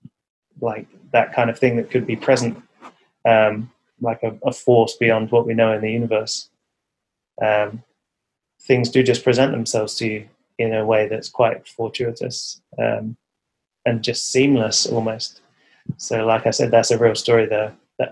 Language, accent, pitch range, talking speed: English, British, 110-120 Hz, 165 wpm